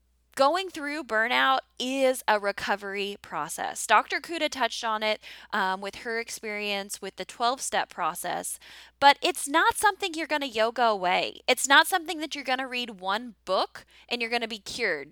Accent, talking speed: American, 180 wpm